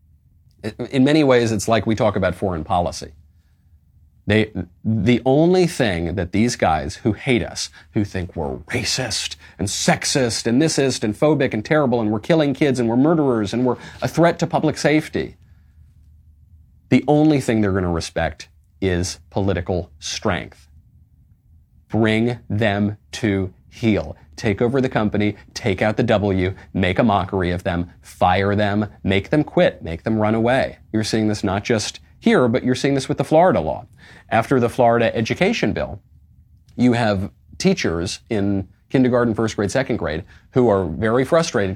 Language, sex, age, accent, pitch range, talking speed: English, male, 30-49, American, 90-125 Hz, 160 wpm